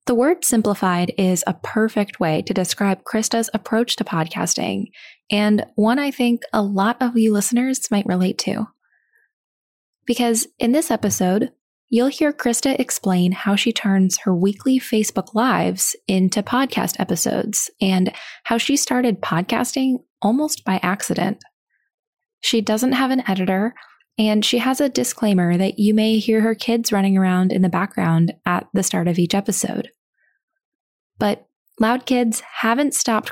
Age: 20-39